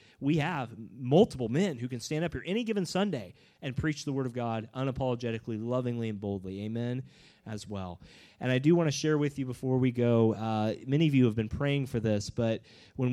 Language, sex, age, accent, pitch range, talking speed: English, male, 30-49, American, 110-135 Hz, 215 wpm